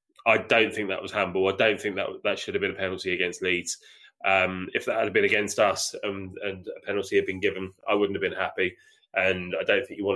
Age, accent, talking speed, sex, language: 20-39, British, 255 wpm, male, English